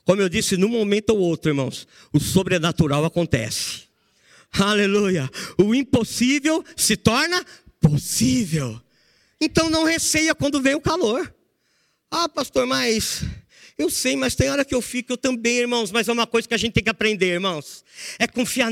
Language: Portuguese